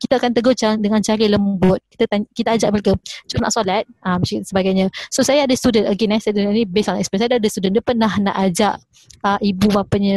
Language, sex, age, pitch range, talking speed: Malay, female, 20-39, 200-240 Hz, 230 wpm